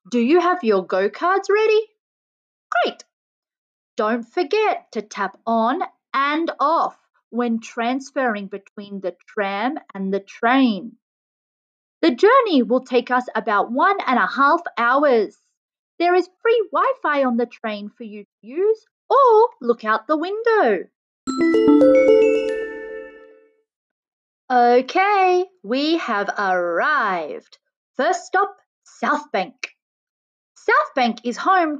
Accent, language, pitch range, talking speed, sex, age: Australian, English, 230-375 Hz, 115 wpm, female, 30-49